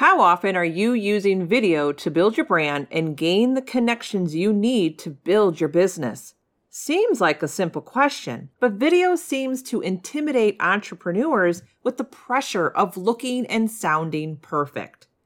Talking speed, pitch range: 155 wpm, 175-240 Hz